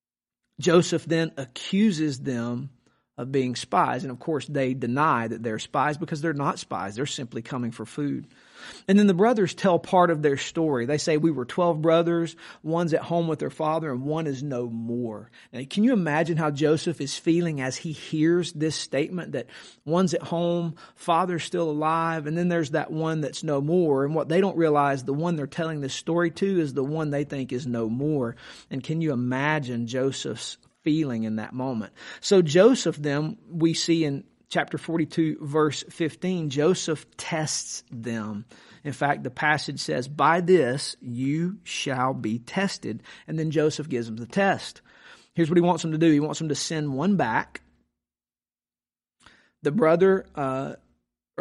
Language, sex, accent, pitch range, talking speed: English, male, American, 135-170 Hz, 180 wpm